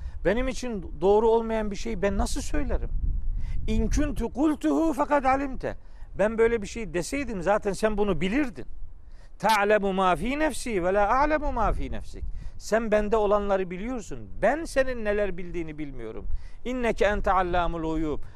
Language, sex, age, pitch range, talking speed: Turkish, male, 50-69, 175-245 Hz, 145 wpm